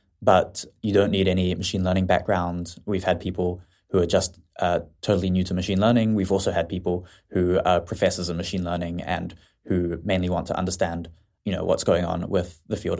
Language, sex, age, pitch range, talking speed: English, male, 20-39, 90-100 Hz, 205 wpm